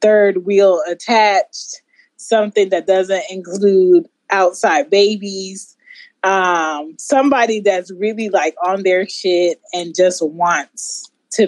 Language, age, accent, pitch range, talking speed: English, 20-39, American, 185-230 Hz, 110 wpm